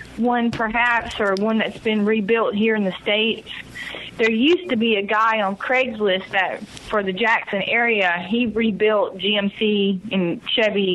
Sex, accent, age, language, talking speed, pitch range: female, American, 20-39, English, 170 wpm, 185-215 Hz